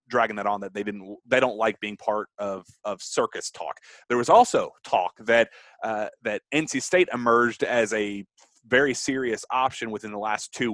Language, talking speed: English, 190 wpm